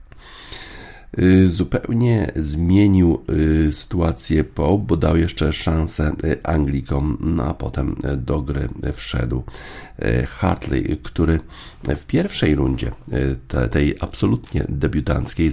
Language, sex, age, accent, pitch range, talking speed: Polish, male, 50-69, native, 65-80 Hz, 85 wpm